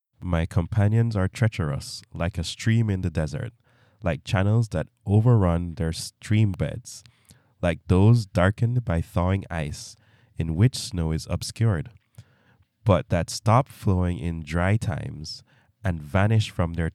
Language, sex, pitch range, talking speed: English, male, 90-120 Hz, 140 wpm